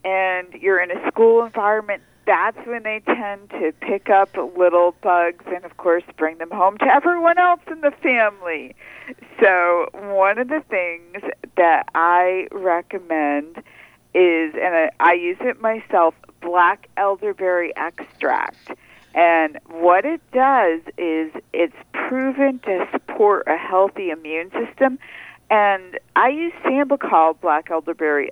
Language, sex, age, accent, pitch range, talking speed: English, female, 50-69, American, 165-215 Hz, 135 wpm